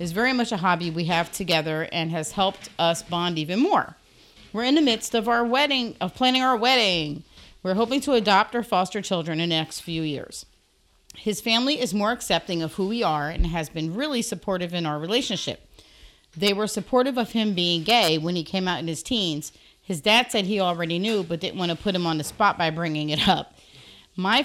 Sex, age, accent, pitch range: female, 40-59, American, 170-230 Hz